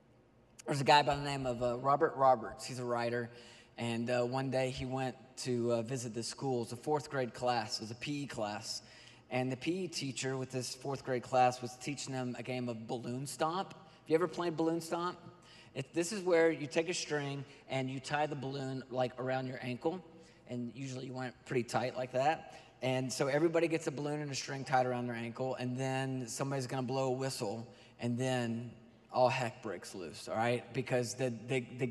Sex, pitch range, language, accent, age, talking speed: male, 125-155 Hz, English, American, 20-39, 220 wpm